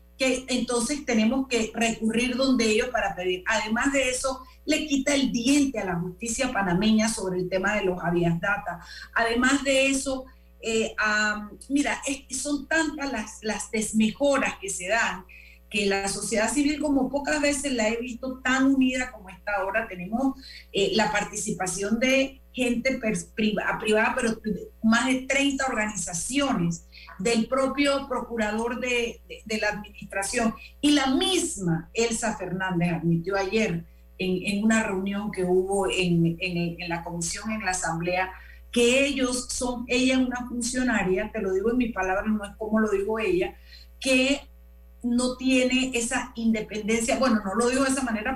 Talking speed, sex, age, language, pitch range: 165 wpm, female, 40-59, Spanish, 195-260 Hz